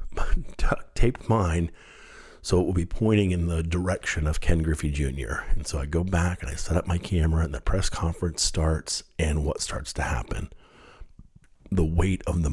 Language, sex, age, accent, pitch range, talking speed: English, male, 40-59, American, 75-95 Hz, 190 wpm